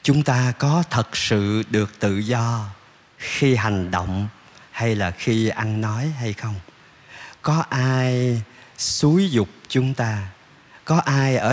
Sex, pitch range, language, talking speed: male, 110-150 Hz, Vietnamese, 140 wpm